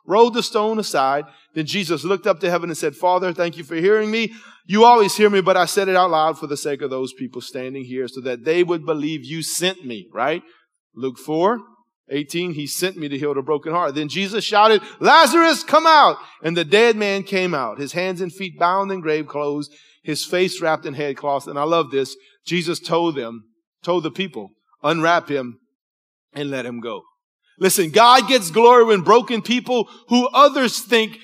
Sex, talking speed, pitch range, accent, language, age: male, 205 wpm, 155-225 Hz, American, English, 40-59